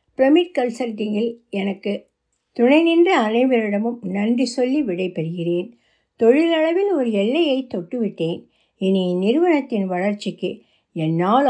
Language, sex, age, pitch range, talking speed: Tamil, female, 60-79, 180-255 Hz, 90 wpm